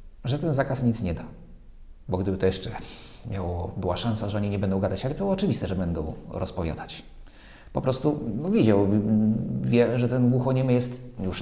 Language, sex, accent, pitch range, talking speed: Polish, male, native, 95-120 Hz, 180 wpm